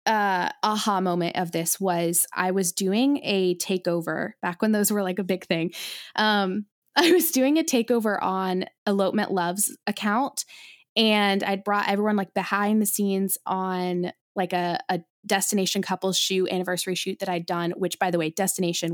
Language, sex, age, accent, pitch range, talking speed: English, female, 20-39, American, 175-210 Hz, 170 wpm